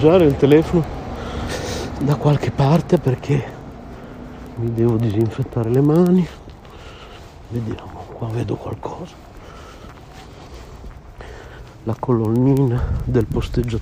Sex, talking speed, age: male, 85 wpm, 50-69